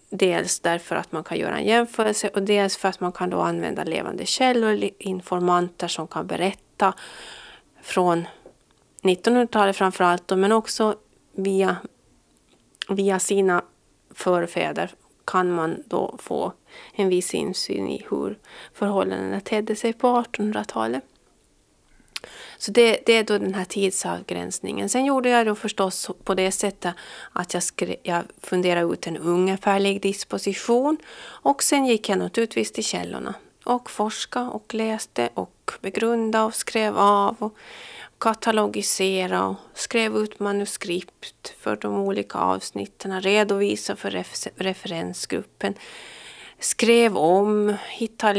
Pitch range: 175-220 Hz